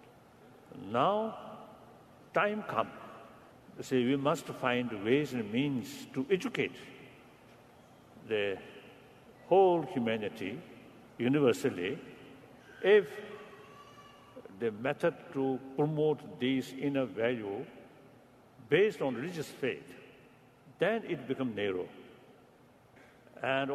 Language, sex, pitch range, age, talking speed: Persian, male, 125-150 Hz, 60-79, 85 wpm